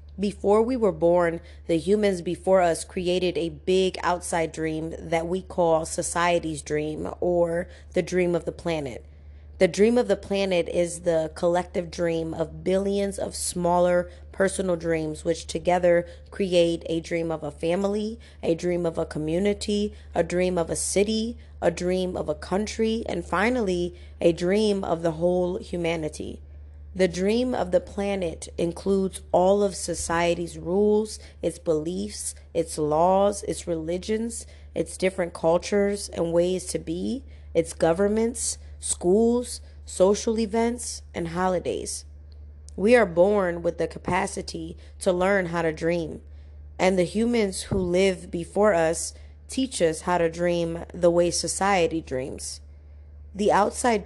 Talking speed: 145 wpm